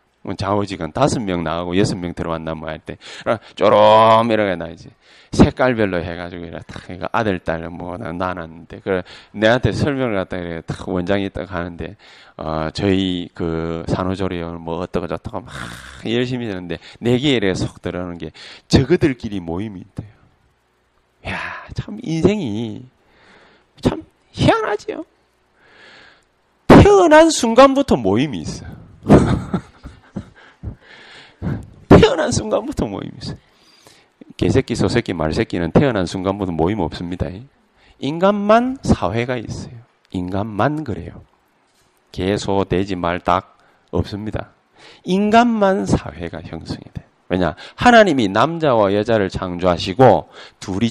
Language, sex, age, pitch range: Korean, male, 30-49, 85-140 Hz